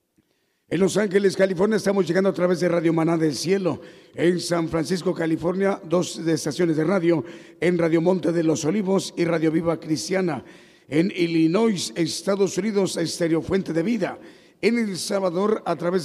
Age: 50-69